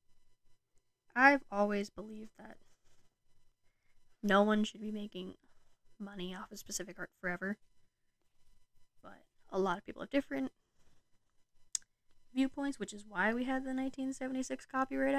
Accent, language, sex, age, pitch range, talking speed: American, English, female, 10-29, 185-230 Hz, 125 wpm